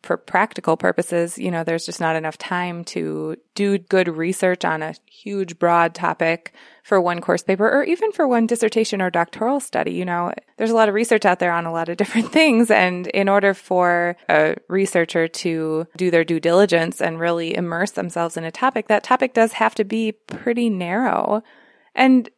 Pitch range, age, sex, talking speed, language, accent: 175-230 Hz, 20-39, female, 195 wpm, English, American